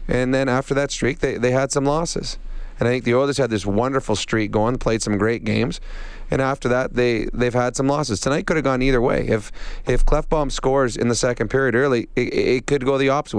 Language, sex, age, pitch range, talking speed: English, male, 30-49, 110-130 Hz, 240 wpm